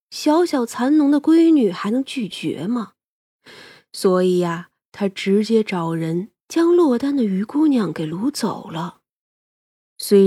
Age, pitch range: 20-39, 180-250 Hz